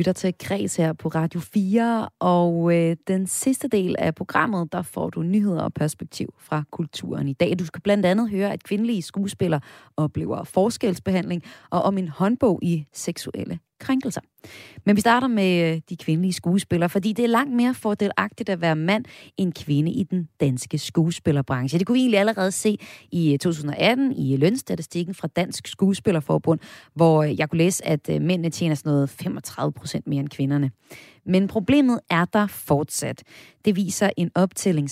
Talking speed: 165 wpm